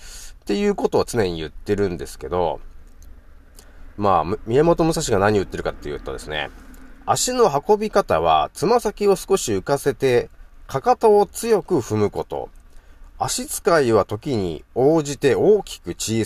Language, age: Japanese, 40-59